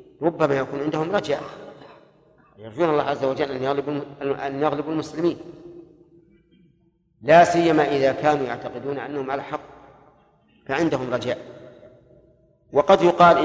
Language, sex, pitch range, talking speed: Arabic, male, 135-165 Hz, 105 wpm